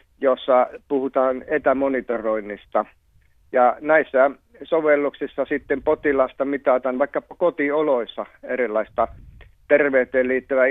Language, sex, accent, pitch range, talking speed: Finnish, male, native, 120-140 Hz, 80 wpm